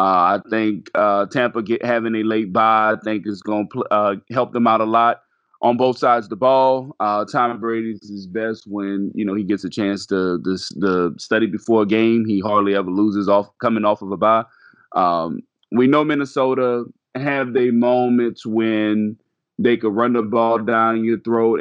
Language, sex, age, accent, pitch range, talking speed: English, male, 20-39, American, 100-115 Hz, 200 wpm